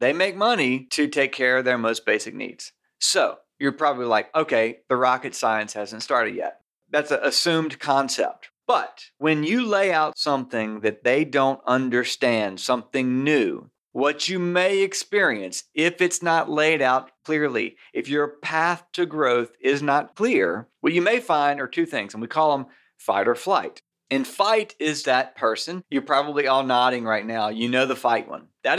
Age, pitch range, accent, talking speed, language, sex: 40-59, 125-155 Hz, American, 180 wpm, English, male